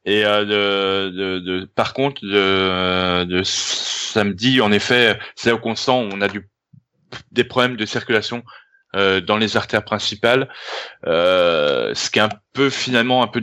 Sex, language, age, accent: male, French, 20-39, French